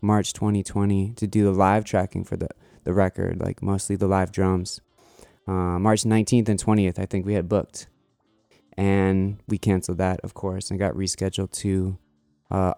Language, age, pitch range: English, 20-39, 95-110 Hz